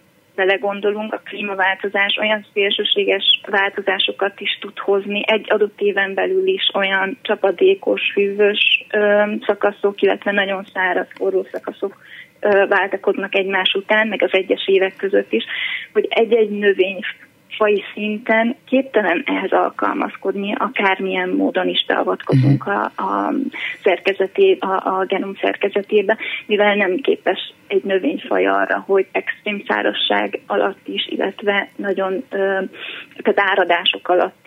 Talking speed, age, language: 120 wpm, 20-39, Hungarian